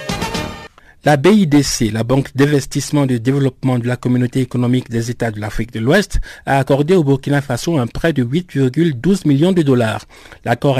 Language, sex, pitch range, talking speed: French, male, 120-155 Hz, 165 wpm